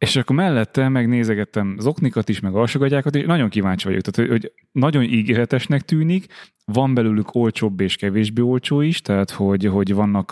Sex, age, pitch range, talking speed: male, 30-49, 100-120 Hz, 165 wpm